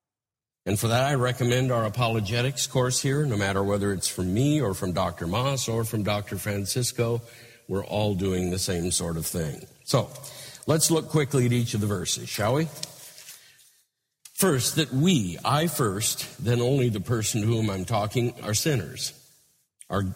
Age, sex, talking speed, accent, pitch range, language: 50-69, male, 175 wpm, American, 105-140 Hz, English